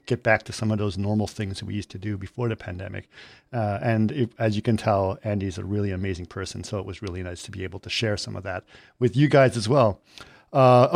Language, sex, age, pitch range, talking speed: English, male, 50-69, 110-130 Hz, 245 wpm